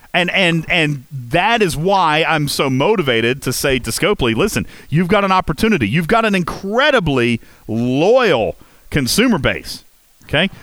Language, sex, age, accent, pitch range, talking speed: English, male, 40-59, American, 120-175 Hz, 145 wpm